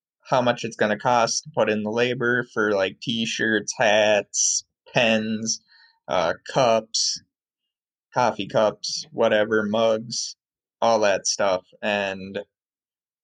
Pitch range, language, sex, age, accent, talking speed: 110-125 Hz, English, male, 20-39, American, 120 wpm